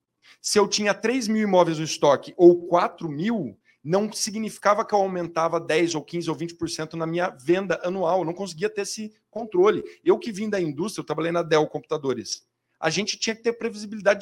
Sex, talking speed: male, 200 wpm